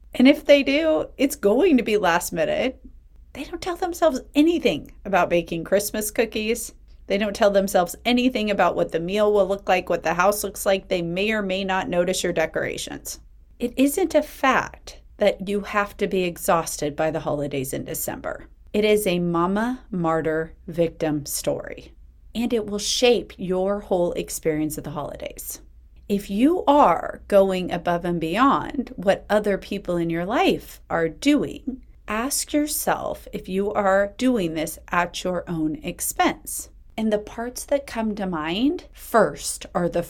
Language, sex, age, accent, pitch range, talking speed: English, female, 30-49, American, 175-260 Hz, 170 wpm